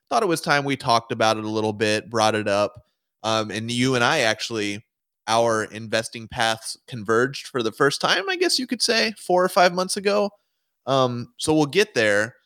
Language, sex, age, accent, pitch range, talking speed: English, male, 20-39, American, 105-130 Hz, 205 wpm